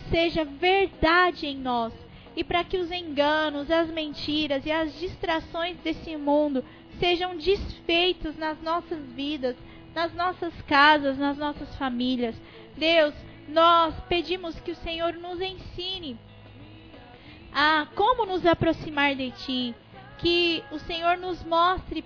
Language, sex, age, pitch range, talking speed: Portuguese, female, 10-29, 290-350 Hz, 125 wpm